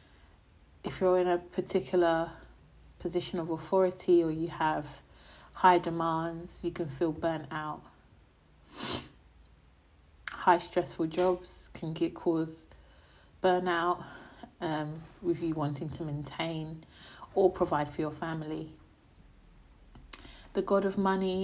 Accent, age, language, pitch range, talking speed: British, 30-49, English, 155-180 Hz, 110 wpm